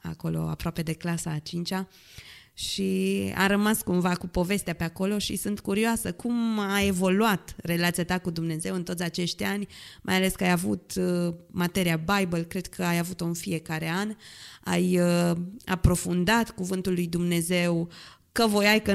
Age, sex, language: 20-39, female, Romanian